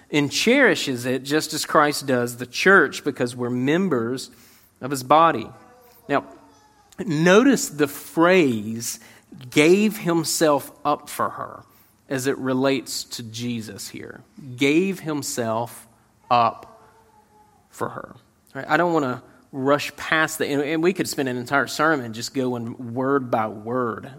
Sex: male